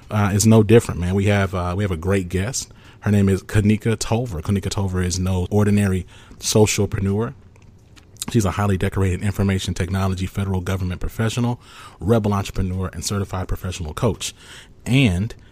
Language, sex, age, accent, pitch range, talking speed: English, male, 30-49, American, 90-105 Hz, 155 wpm